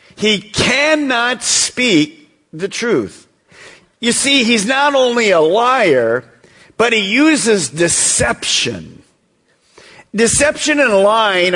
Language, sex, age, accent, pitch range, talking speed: English, male, 50-69, American, 175-275 Hz, 100 wpm